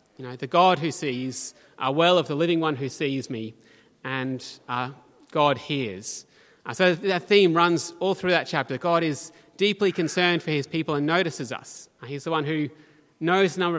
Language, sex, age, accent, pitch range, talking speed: English, male, 30-49, Australian, 145-185 Hz, 205 wpm